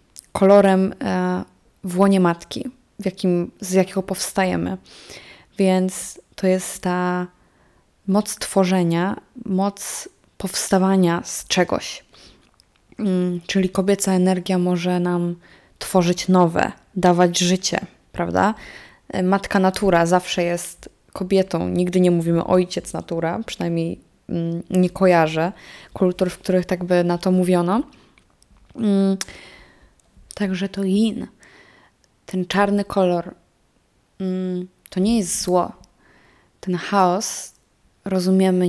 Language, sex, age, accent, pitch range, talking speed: Polish, female, 20-39, native, 175-190 Hz, 100 wpm